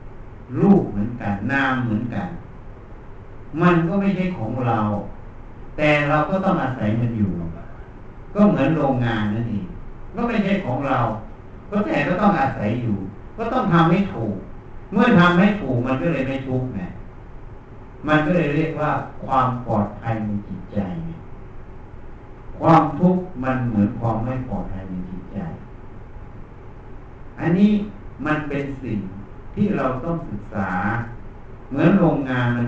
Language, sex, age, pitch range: Thai, male, 60-79, 105-135 Hz